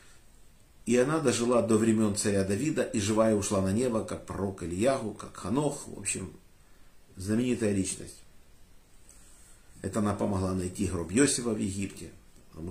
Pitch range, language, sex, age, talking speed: 95-115 Hz, Russian, male, 50-69, 140 wpm